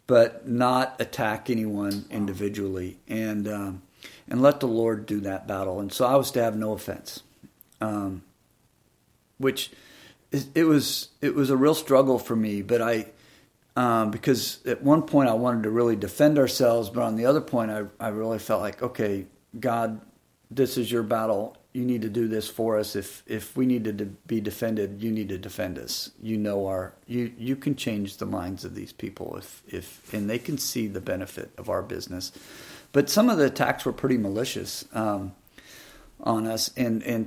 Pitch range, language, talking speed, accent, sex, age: 105-125 Hz, English, 190 wpm, American, male, 50-69